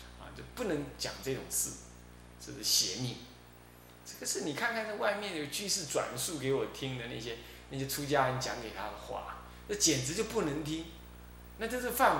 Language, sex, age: Chinese, male, 20-39